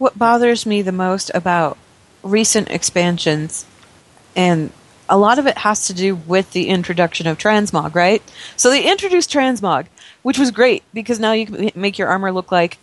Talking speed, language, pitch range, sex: 180 wpm, English, 155-205 Hz, female